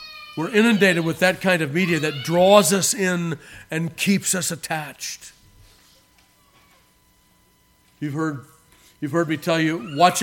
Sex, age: male, 50-69